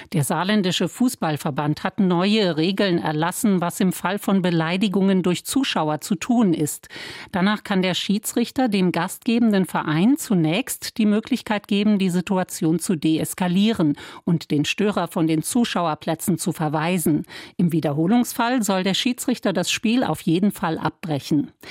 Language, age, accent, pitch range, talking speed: German, 50-69, German, 165-210 Hz, 140 wpm